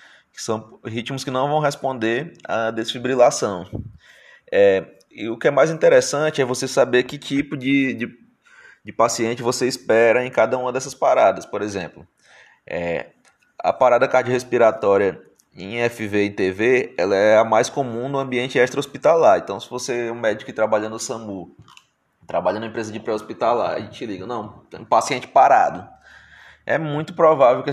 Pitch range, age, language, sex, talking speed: 110-130 Hz, 20-39, Portuguese, male, 160 wpm